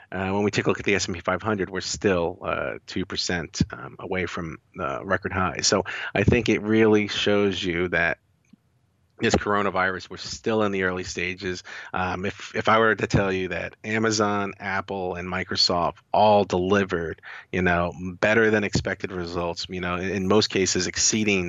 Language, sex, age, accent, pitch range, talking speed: English, male, 40-59, American, 90-100 Hz, 180 wpm